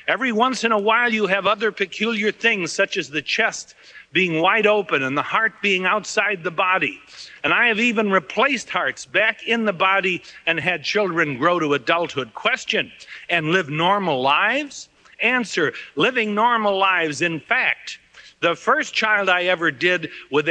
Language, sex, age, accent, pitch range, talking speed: English, male, 60-79, American, 155-225 Hz, 170 wpm